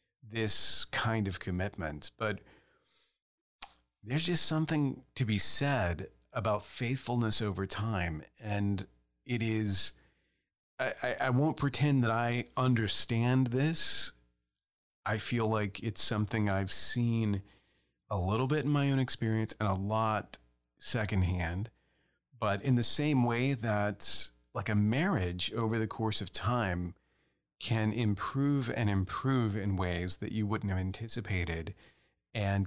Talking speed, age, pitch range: 130 wpm, 40-59, 95-125 Hz